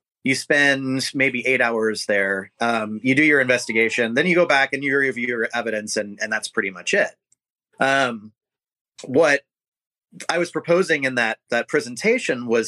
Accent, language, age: American, English, 30-49